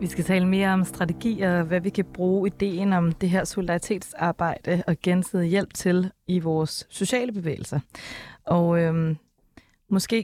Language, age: Danish, 20-39